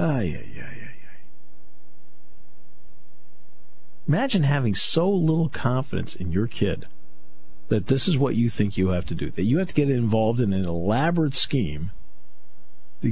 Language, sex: English, male